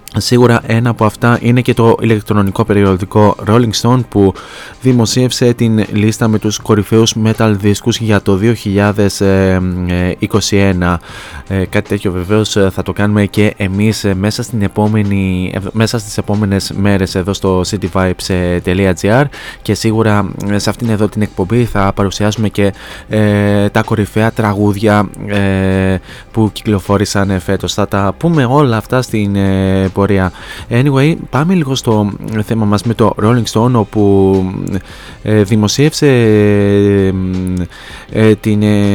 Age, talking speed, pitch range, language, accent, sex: 20-39, 125 wpm, 100-115 Hz, Greek, native, male